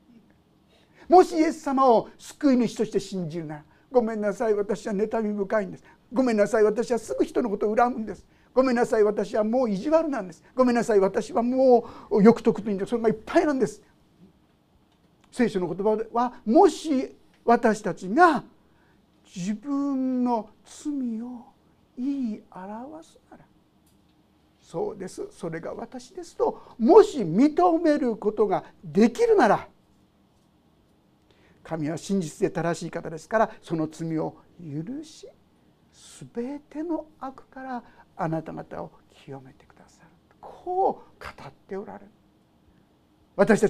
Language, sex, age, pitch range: Japanese, male, 50-69, 205-305 Hz